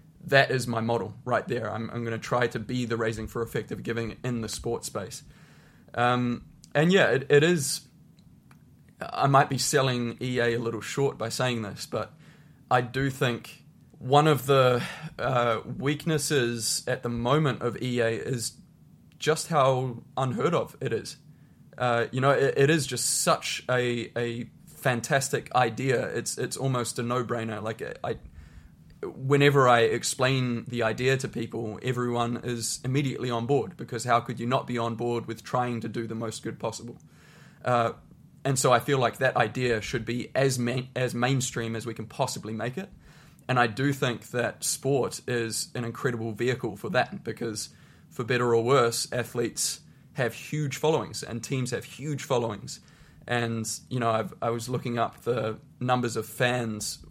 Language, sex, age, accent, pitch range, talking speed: English, male, 20-39, Australian, 115-135 Hz, 175 wpm